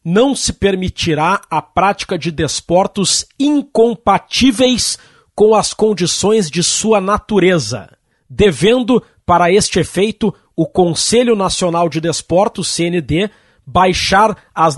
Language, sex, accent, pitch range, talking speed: Portuguese, male, Brazilian, 170-205 Hz, 105 wpm